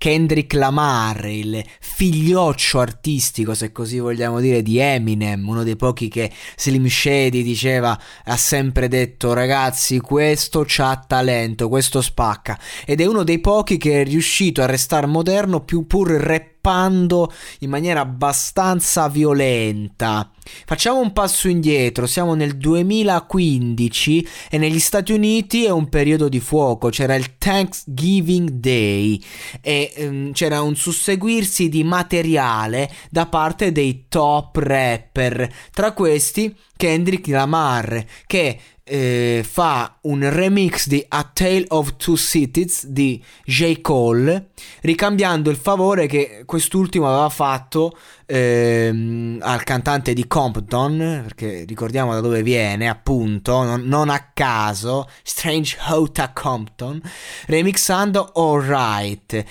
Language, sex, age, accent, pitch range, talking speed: Italian, male, 20-39, native, 120-165 Hz, 125 wpm